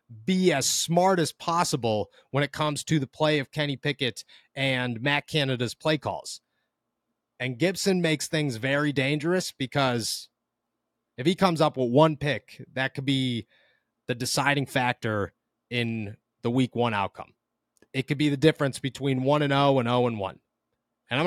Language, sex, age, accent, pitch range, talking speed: English, male, 30-49, American, 125-160 Hz, 165 wpm